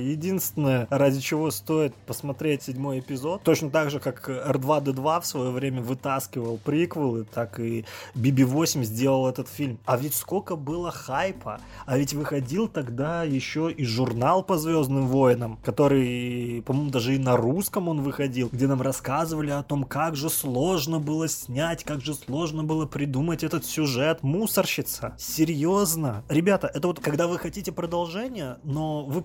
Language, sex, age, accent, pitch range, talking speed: Russian, male, 20-39, native, 135-175 Hz, 150 wpm